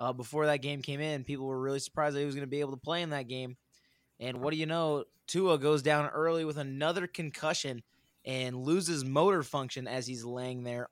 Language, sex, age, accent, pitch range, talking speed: English, male, 20-39, American, 120-145 Hz, 230 wpm